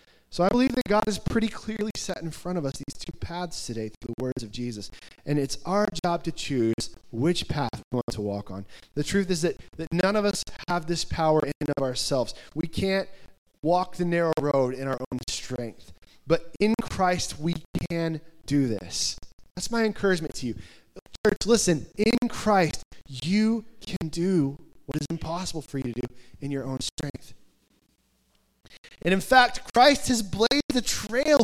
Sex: male